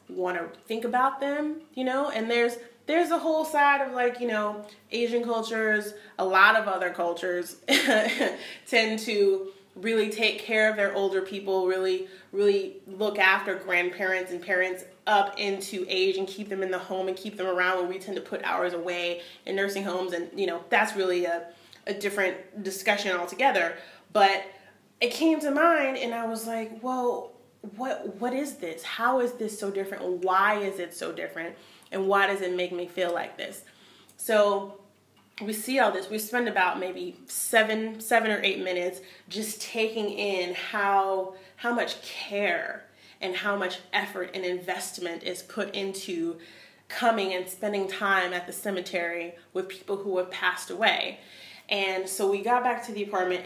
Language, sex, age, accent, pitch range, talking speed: English, female, 30-49, American, 185-220 Hz, 175 wpm